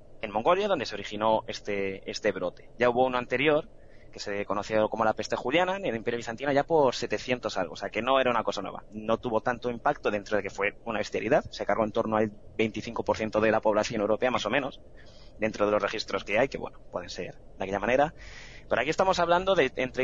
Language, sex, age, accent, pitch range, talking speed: Spanish, male, 20-39, Spanish, 105-140 Hz, 230 wpm